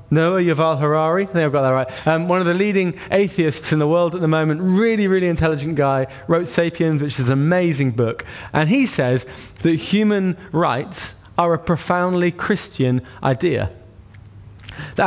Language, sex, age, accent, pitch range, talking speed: English, male, 20-39, British, 125-175 Hz, 170 wpm